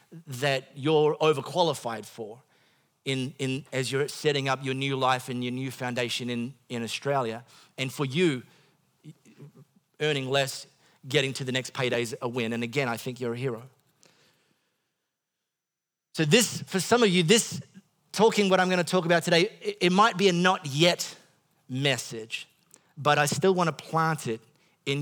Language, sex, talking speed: English, male, 165 wpm